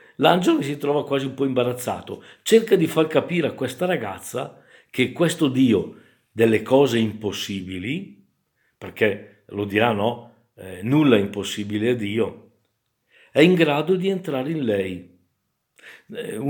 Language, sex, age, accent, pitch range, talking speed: Italian, male, 60-79, native, 110-145 Hz, 140 wpm